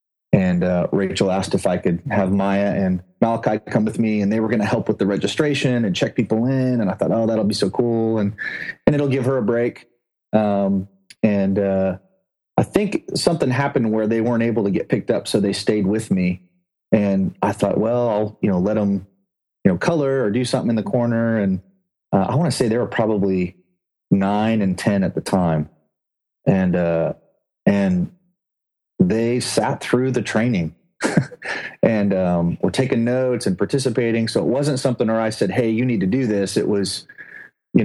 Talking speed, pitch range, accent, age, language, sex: 195 wpm, 95-125 Hz, American, 30-49, English, male